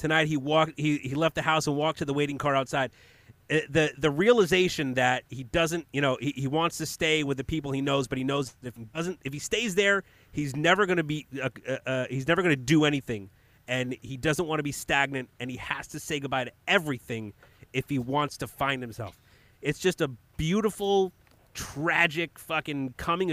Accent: American